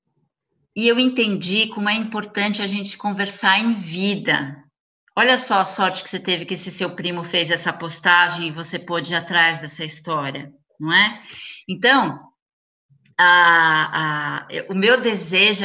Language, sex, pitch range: Portuguese, female, 170-230 Hz